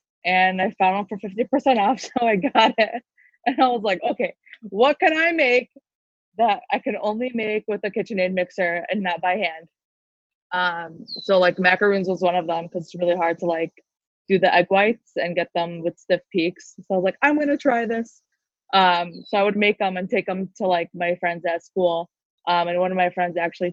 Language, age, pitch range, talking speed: English, 20-39, 170-195 Hz, 225 wpm